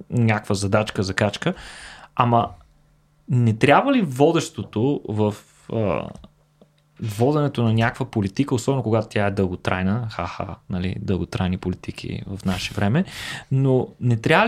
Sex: male